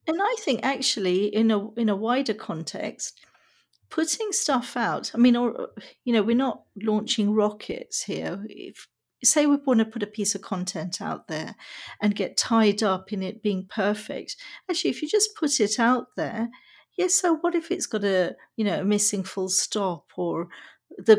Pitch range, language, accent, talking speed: 205-260 Hz, English, British, 190 wpm